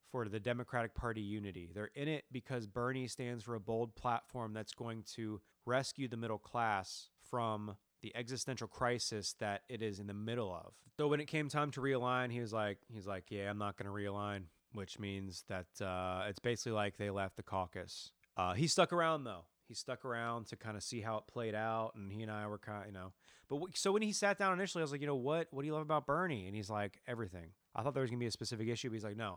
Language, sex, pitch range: English, male, 100-125 Hz